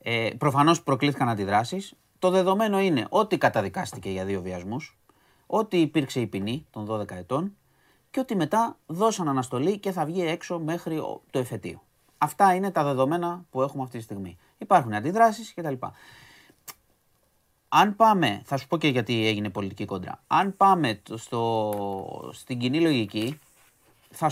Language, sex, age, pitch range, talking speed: Greek, male, 30-49, 115-175 Hz, 155 wpm